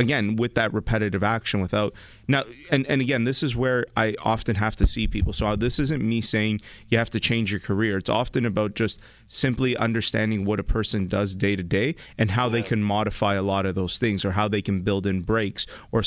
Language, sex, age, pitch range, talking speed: English, male, 30-49, 100-115 Hz, 230 wpm